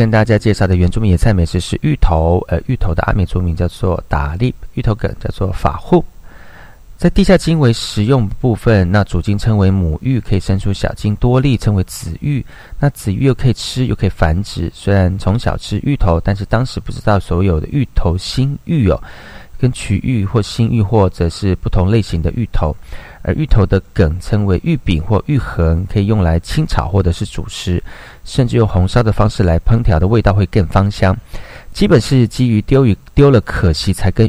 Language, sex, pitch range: Chinese, male, 85-115 Hz